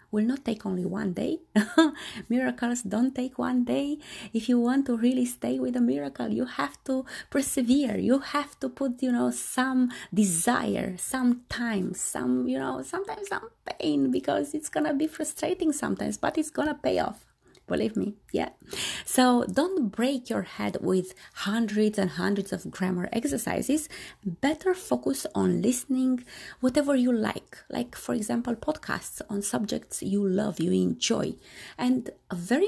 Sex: female